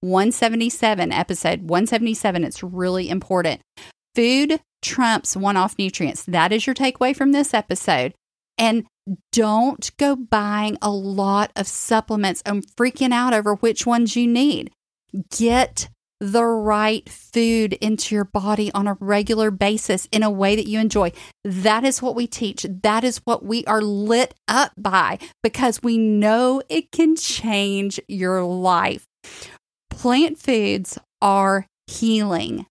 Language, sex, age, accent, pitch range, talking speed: English, female, 40-59, American, 190-235 Hz, 140 wpm